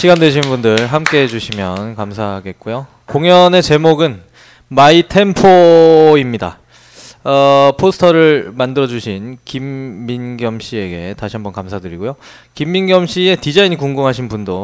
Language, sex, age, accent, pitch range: Korean, male, 20-39, native, 100-145 Hz